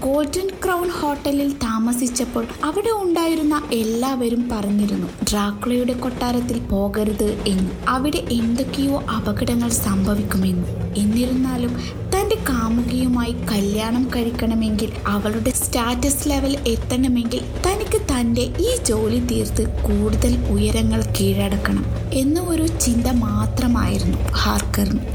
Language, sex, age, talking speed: Malayalam, female, 20-39, 90 wpm